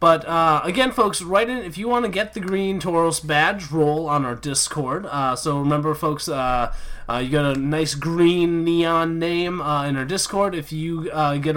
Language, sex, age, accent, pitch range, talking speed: English, male, 20-39, American, 145-190 Hz, 205 wpm